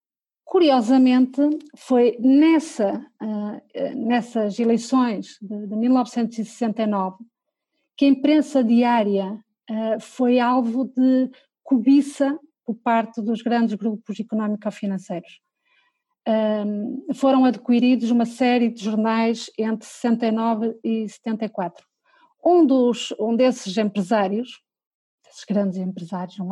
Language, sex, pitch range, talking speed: Portuguese, female, 220-275 Hz, 100 wpm